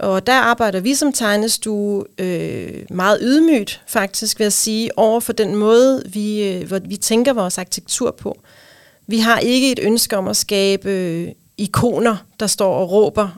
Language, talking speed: Danish, 175 wpm